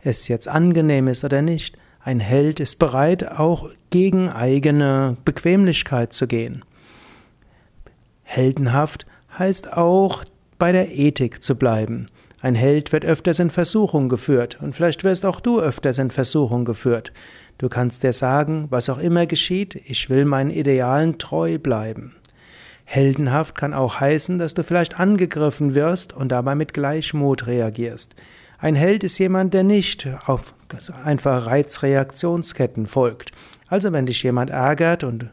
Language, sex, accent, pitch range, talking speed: German, male, German, 130-170 Hz, 140 wpm